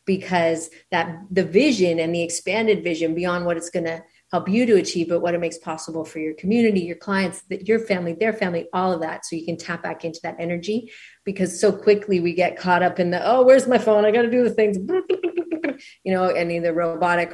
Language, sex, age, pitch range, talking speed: English, female, 40-59, 165-190 Hz, 230 wpm